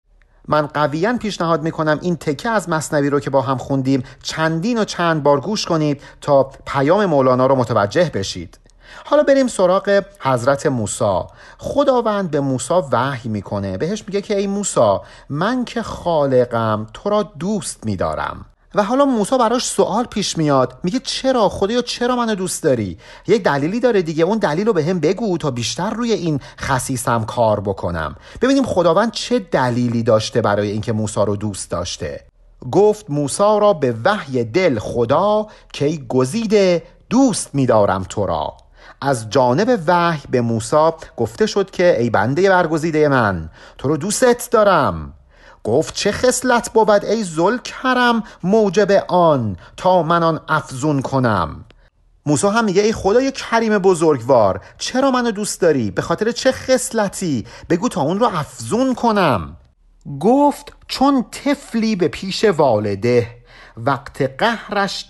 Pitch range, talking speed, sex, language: 130-210 Hz, 150 wpm, male, Persian